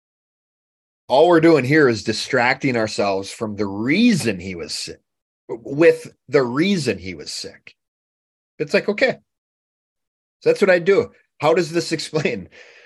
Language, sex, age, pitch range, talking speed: English, male, 30-49, 105-140 Hz, 145 wpm